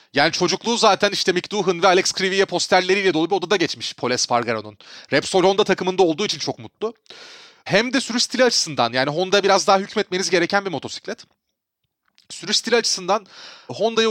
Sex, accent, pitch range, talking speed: male, native, 170-220 Hz, 170 wpm